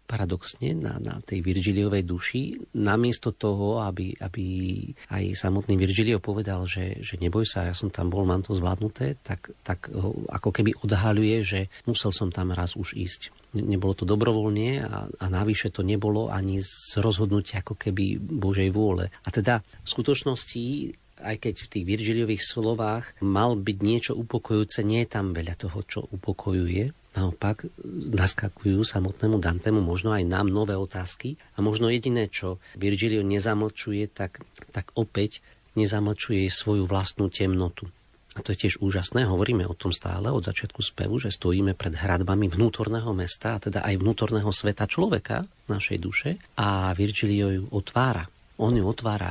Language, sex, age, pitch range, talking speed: Slovak, male, 40-59, 95-110 Hz, 160 wpm